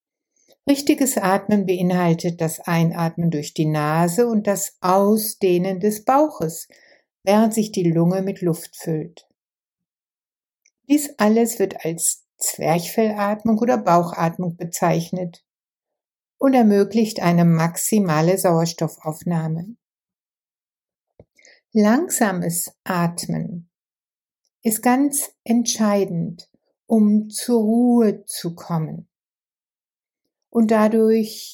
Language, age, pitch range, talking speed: German, 60-79, 175-220 Hz, 85 wpm